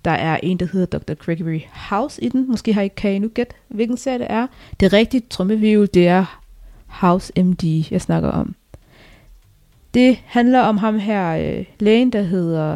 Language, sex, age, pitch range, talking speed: Danish, female, 20-39, 175-225 Hz, 190 wpm